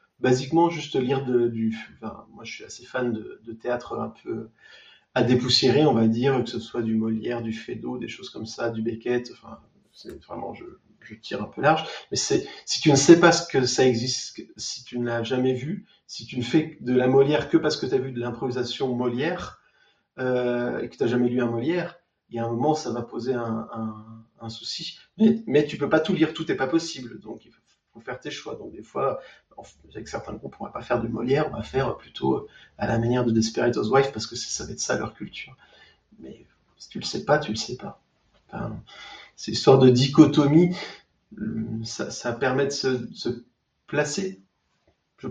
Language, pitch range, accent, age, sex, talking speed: French, 115-140 Hz, French, 30-49, male, 225 wpm